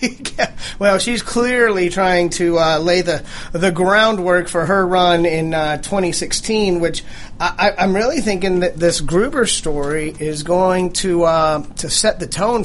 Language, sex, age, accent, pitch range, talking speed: English, male, 30-49, American, 165-195 Hz, 160 wpm